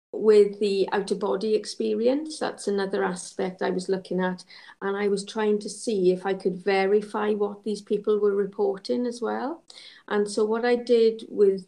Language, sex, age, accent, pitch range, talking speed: English, female, 40-59, British, 190-215 Hz, 180 wpm